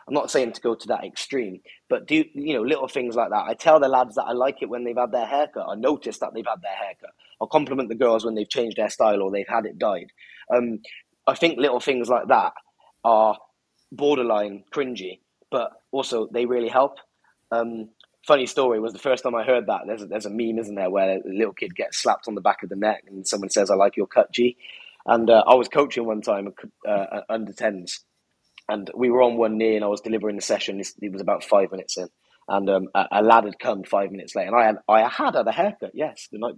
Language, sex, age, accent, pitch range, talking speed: English, male, 20-39, British, 105-140 Hz, 250 wpm